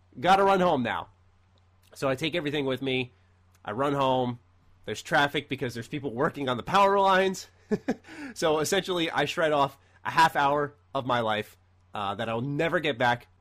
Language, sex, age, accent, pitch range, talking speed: English, male, 30-49, American, 110-155 Hz, 180 wpm